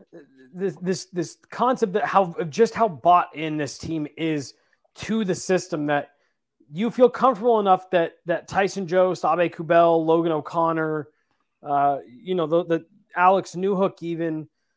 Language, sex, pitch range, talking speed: English, male, 155-195 Hz, 150 wpm